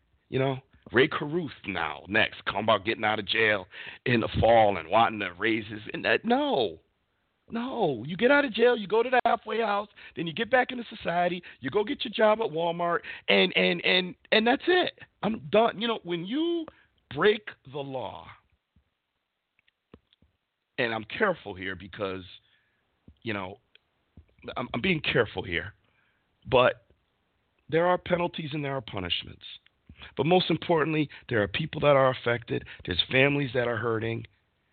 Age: 40-59